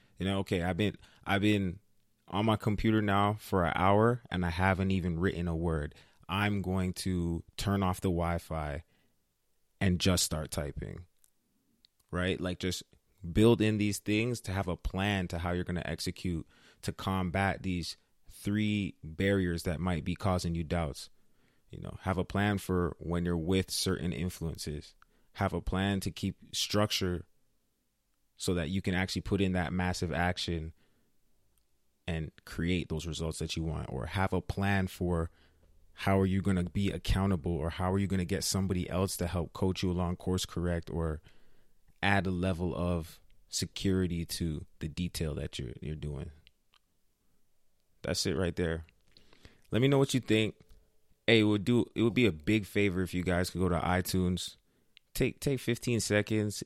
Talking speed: 175 wpm